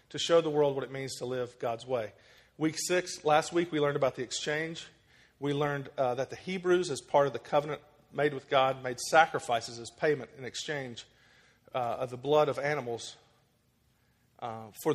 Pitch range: 125-150 Hz